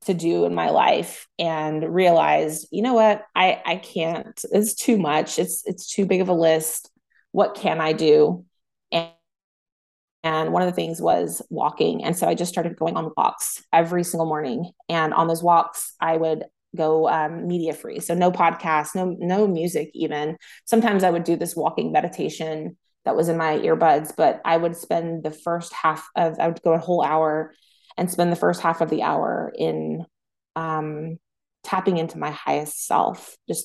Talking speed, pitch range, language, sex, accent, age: 185 wpm, 160-180 Hz, English, female, American, 20-39